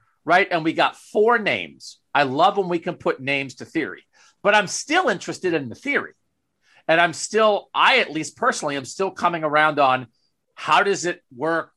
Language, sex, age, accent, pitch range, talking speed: English, male, 40-59, American, 150-210 Hz, 195 wpm